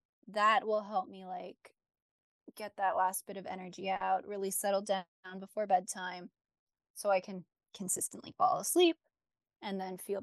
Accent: American